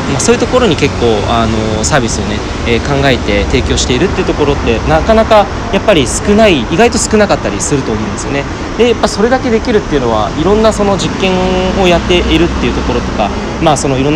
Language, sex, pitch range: Japanese, male, 105-165 Hz